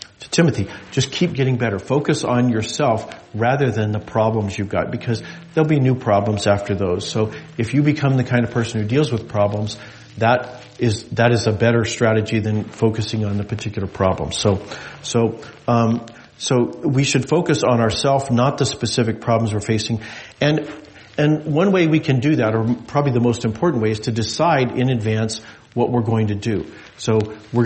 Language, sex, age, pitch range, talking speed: English, male, 40-59, 110-130 Hz, 190 wpm